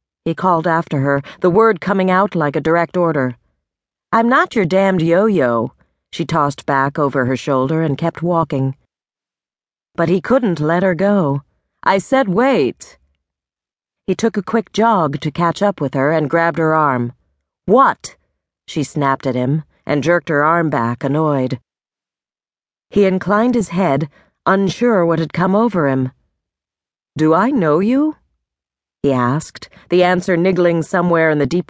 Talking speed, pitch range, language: 155 wpm, 140-195 Hz, English